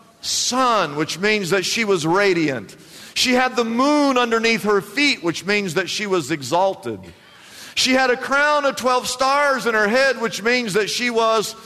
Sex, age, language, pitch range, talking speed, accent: male, 50-69, English, 170-225 Hz, 180 wpm, American